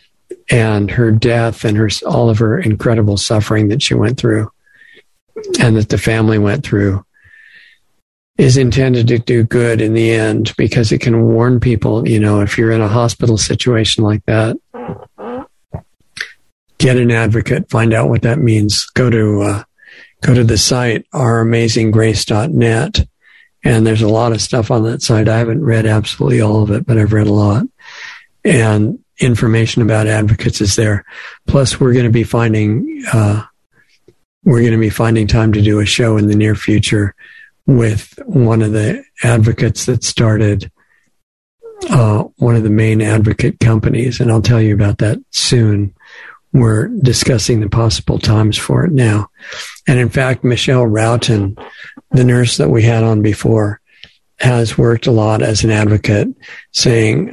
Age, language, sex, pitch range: 50-69, English, male, 110-125 Hz